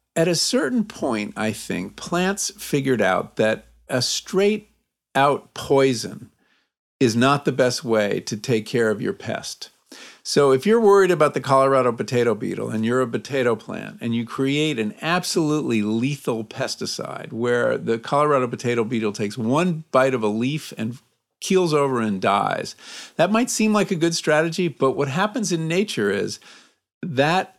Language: English